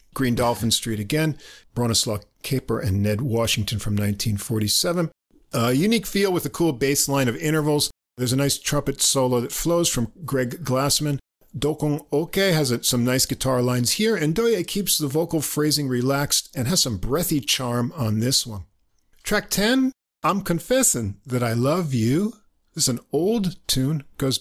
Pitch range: 115-155 Hz